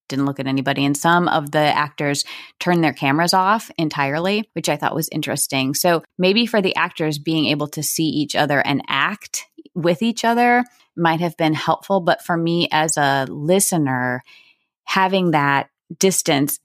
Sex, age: female, 20-39